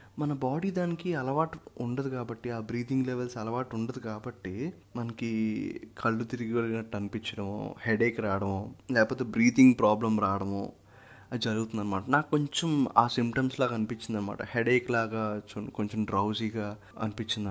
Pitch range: 115-150 Hz